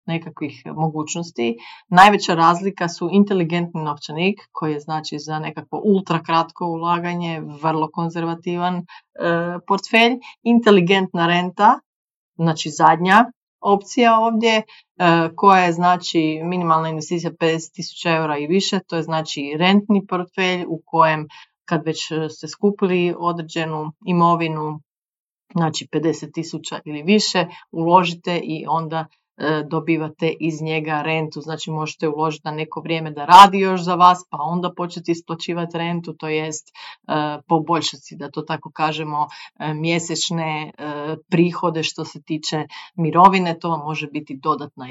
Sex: female